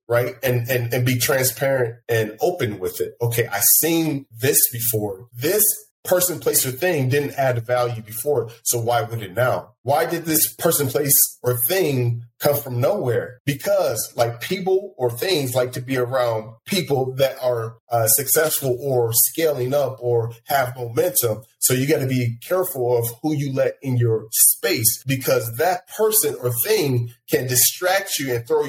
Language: English